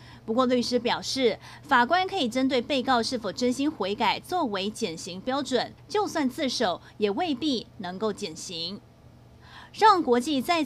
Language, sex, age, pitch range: Chinese, female, 30-49, 215-265 Hz